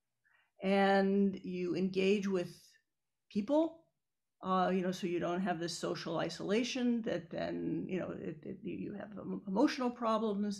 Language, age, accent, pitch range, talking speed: English, 50-69, American, 175-210 Hz, 140 wpm